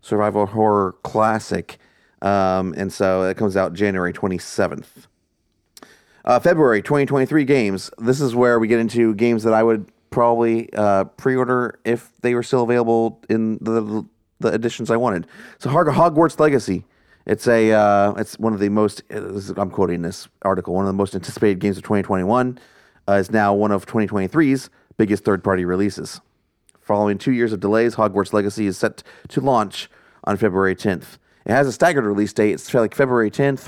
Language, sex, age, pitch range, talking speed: English, male, 30-49, 95-115 Hz, 170 wpm